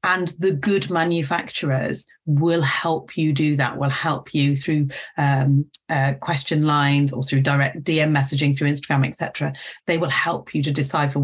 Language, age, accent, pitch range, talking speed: English, 40-59, British, 140-165 Hz, 165 wpm